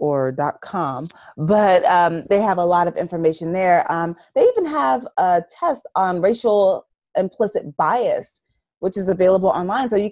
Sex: female